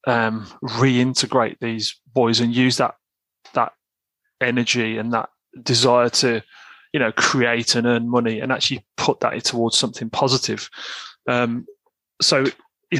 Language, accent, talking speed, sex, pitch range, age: English, British, 135 wpm, male, 115-130 Hz, 30-49